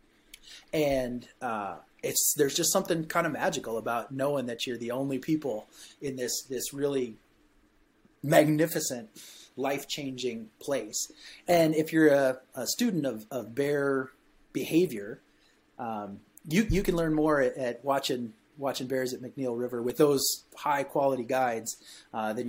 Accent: American